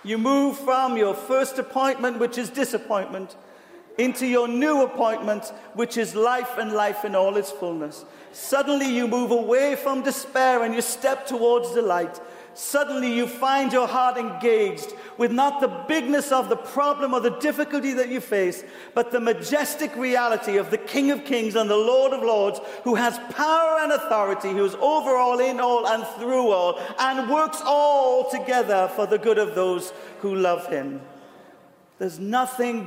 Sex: male